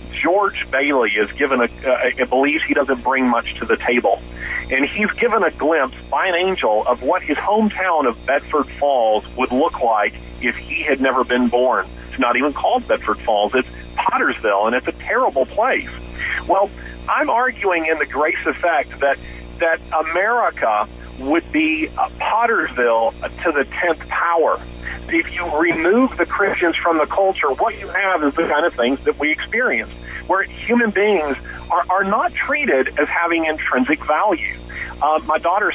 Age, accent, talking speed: 40-59, American, 175 wpm